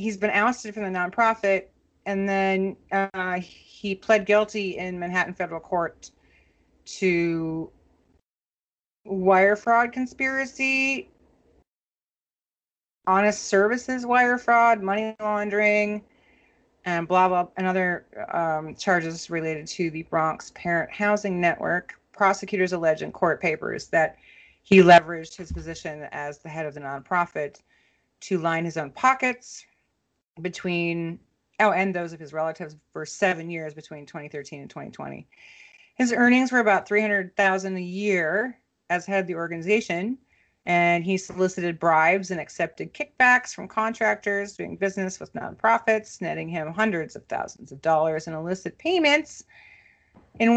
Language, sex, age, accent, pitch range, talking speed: English, female, 30-49, American, 170-215 Hz, 130 wpm